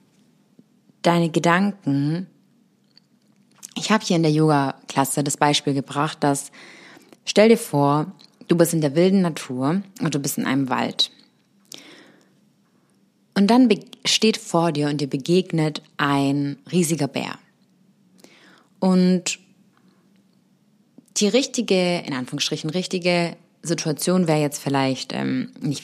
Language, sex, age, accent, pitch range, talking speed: German, female, 20-39, German, 155-215 Hz, 115 wpm